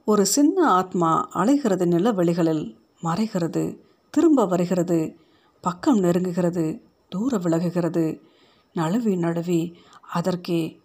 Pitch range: 175-215 Hz